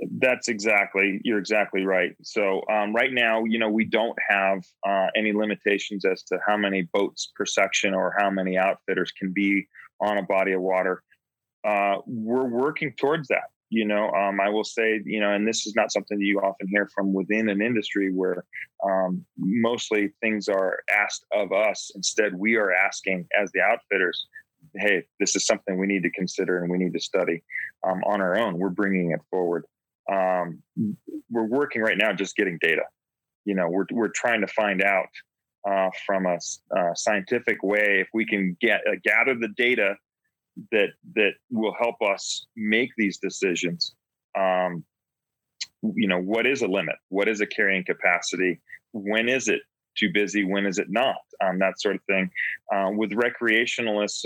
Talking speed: 180 wpm